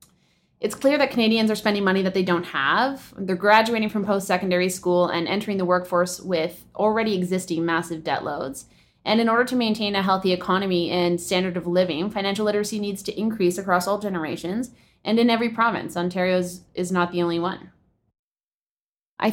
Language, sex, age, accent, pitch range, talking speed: English, female, 20-39, American, 175-215 Hz, 175 wpm